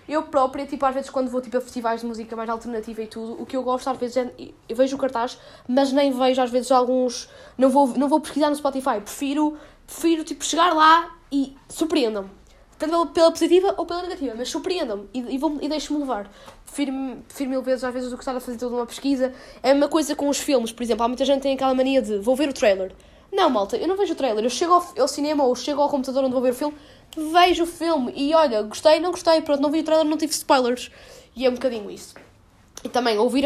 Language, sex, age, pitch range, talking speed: Portuguese, female, 10-29, 245-310 Hz, 250 wpm